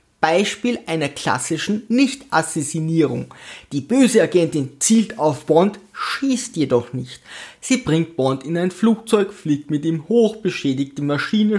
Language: German